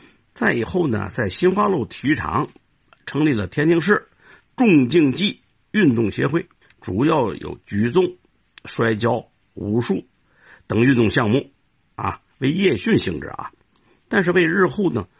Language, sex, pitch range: Chinese, male, 110-180 Hz